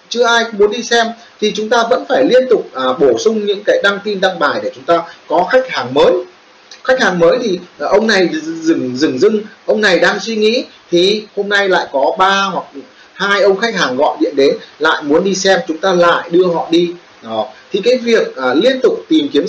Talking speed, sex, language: 230 wpm, male, Vietnamese